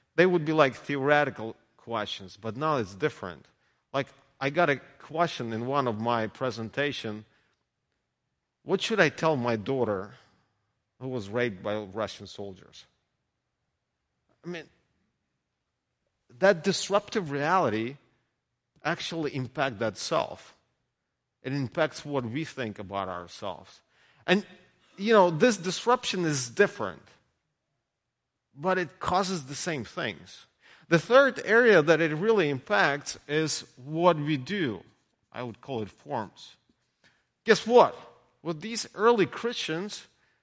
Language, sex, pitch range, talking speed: English, male, 130-210 Hz, 125 wpm